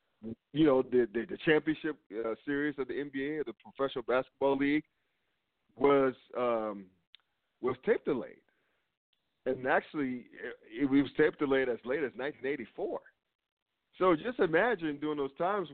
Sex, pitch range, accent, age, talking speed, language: male, 115-155 Hz, American, 40-59, 140 wpm, English